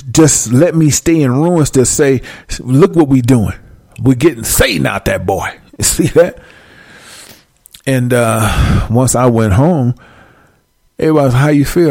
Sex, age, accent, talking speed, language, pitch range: male, 40-59, American, 155 wpm, English, 110-140 Hz